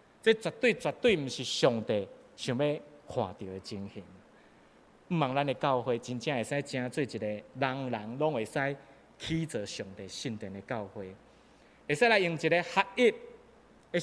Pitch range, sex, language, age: 110-155 Hz, male, Chinese, 30-49